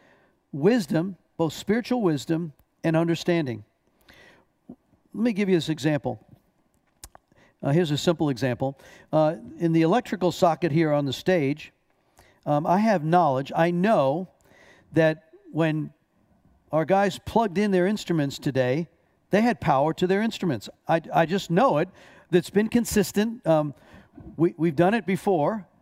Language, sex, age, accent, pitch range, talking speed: English, male, 50-69, American, 160-205 Hz, 145 wpm